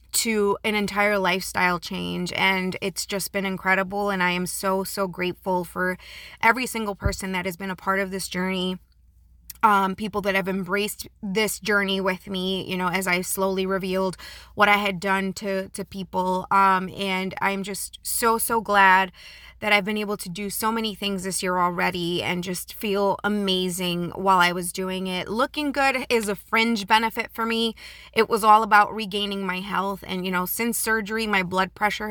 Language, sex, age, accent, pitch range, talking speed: English, female, 20-39, American, 185-210 Hz, 190 wpm